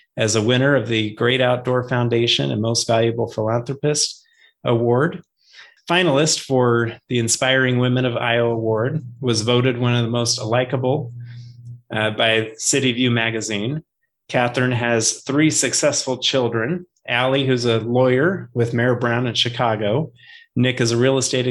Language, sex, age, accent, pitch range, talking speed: English, male, 30-49, American, 115-140 Hz, 145 wpm